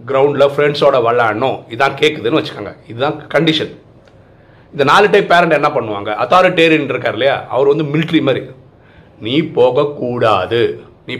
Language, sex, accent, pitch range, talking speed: Tamil, male, native, 115-155 Hz, 130 wpm